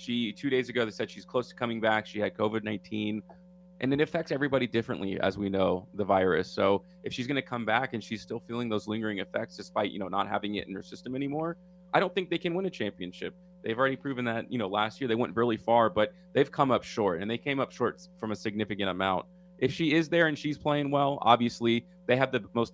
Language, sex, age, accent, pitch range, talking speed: English, male, 30-49, American, 105-145 Hz, 250 wpm